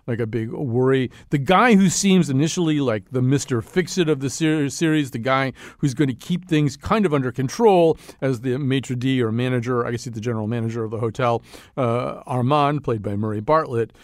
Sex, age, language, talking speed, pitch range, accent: male, 50-69, English, 200 wpm, 115-145 Hz, American